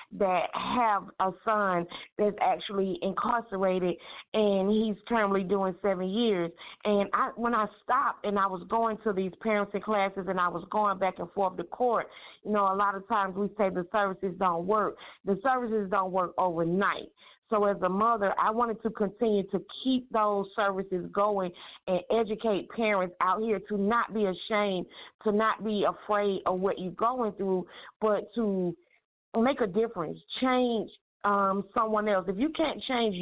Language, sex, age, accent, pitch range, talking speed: English, female, 40-59, American, 190-220 Hz, 170 wpm